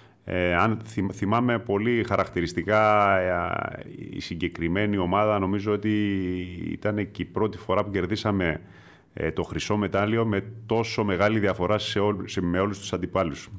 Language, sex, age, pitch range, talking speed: Greek, male, 30-49, 90-110 Hz, 145 wpm